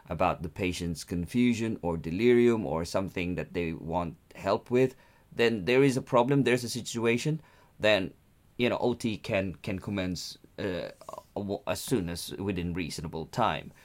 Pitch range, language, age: 95-125 Hz, English, 30-49